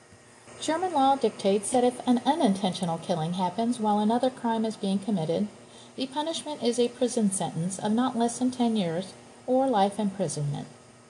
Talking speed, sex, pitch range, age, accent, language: 160 wpm, female, 185-245 Hz, 40-59, American, English